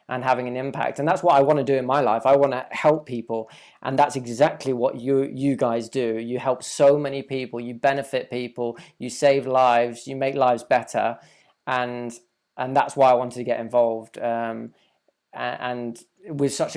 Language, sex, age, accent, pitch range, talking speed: English, male, 20-39, British, 120-140 Hz, 200 wpm